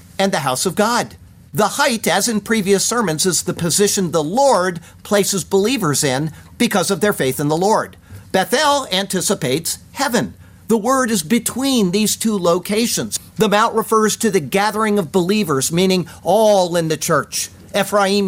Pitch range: 150-215 Hz